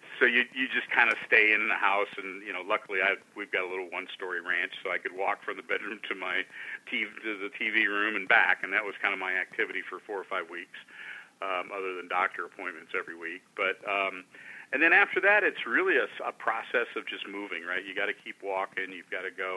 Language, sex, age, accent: English, male, 40-59, American